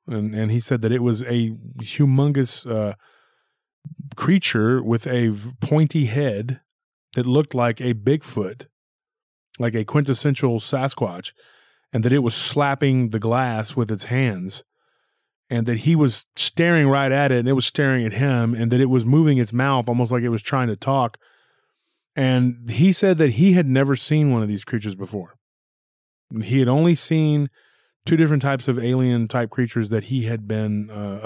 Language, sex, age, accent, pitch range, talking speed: English, male, 30-49, American, 110-135 Hz, 175 wpm